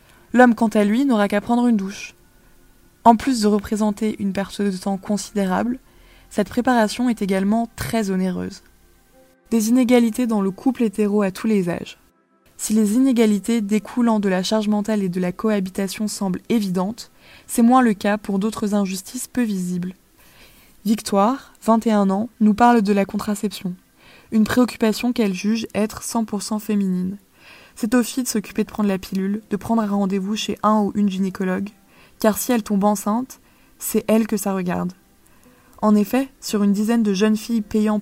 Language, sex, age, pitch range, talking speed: French, female, 20-39, 195-225 Hz, 170 wpm